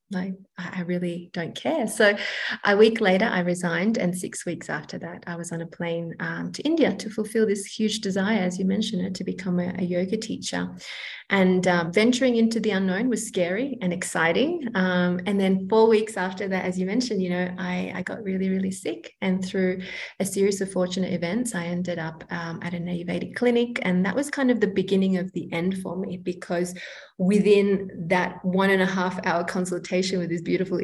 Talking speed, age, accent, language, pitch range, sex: 205 wpm, 30-49, Australian, English, 180-210 Hz, female